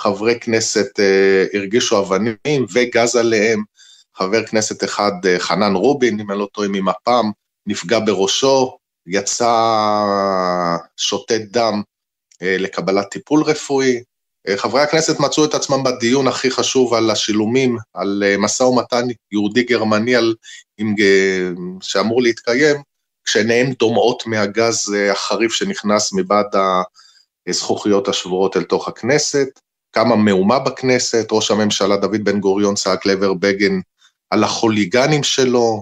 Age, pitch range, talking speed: 20-39, 100-125 Hz, 110 wpm